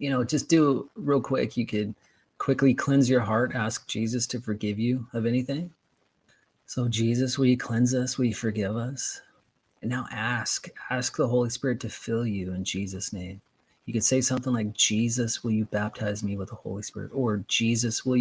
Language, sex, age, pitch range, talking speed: English, male, 30-49, 110-130 Hz, 195 wpm